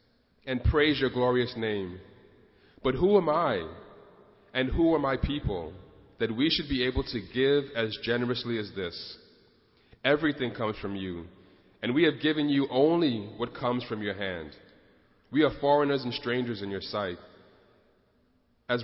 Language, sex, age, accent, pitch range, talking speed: English, male, 30-49, American, 100-130 Hz, 155 wpm